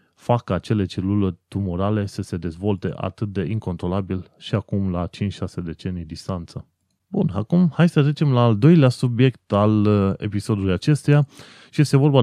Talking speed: 150 wpm